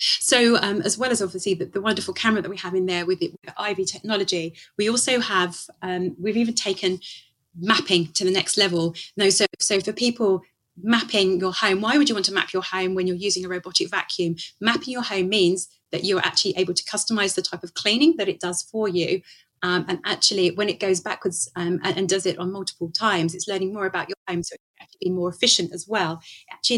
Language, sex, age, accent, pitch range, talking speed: English, female, 30-49, British, 180-205 Hz, 230 wpm